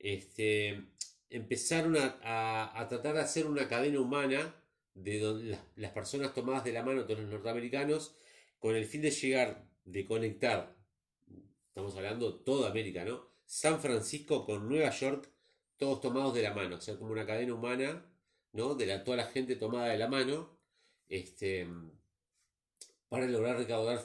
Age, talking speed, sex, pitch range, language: 40-59, 160 wpm, male, 105-140 Hz, Spanish